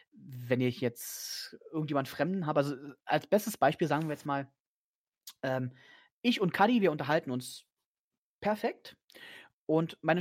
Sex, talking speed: male, 140 wpm